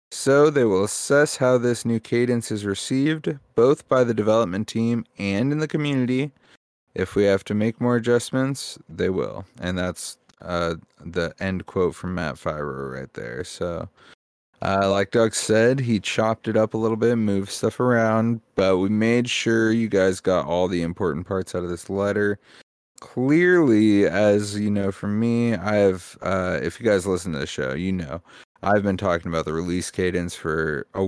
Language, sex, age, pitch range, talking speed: English, male, 30-49, 85-110 Hz, 185 wpm